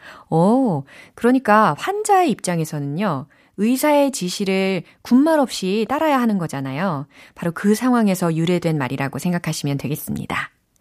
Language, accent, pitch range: Korean, native, 160-255 Hz